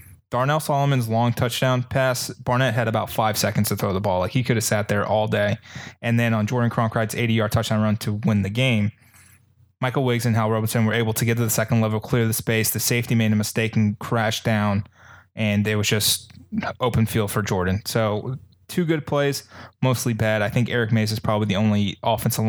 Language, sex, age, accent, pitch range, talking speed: English, male, 20-39, American, 105-120 Hz, 220 wpm